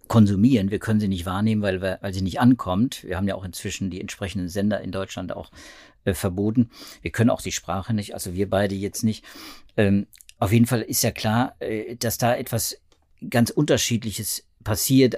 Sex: male